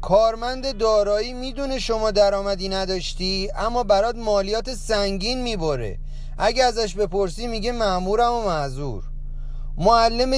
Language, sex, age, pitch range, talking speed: Persian, male, 30-49, 190-245 Hz, 110 wpm